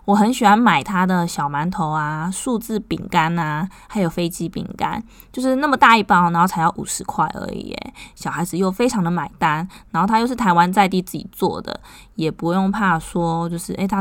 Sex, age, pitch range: female, 20-39, 170-220 Hz